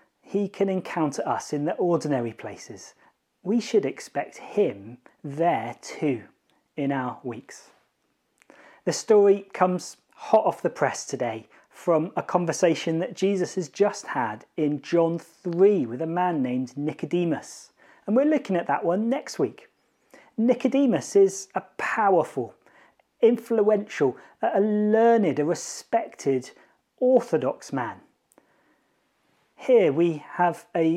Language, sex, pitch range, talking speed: English, male, 150-200 Hz, 125 wpm